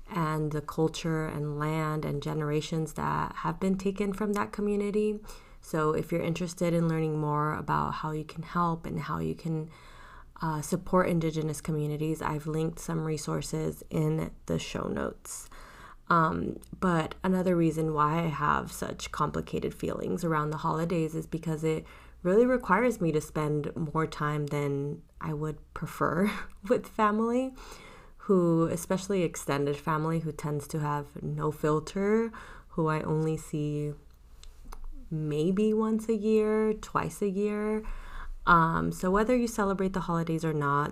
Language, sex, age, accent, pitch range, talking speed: English, female, 20-39, American, 150-185 Hz, 150 wpm